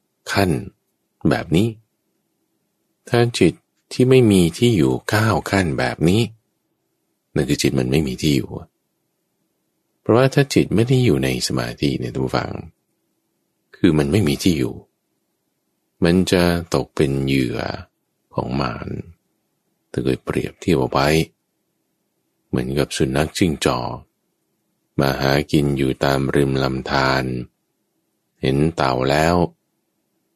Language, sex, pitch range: English, male, 65-90 Hz